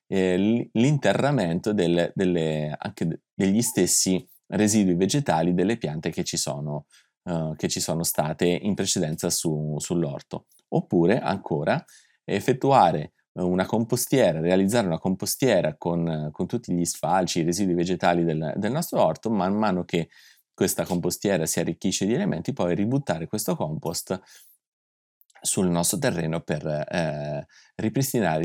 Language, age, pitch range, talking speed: Italian, 30-49, 80-95 Hz, 130 wpm